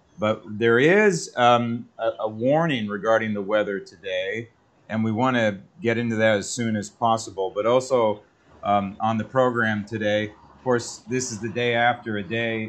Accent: American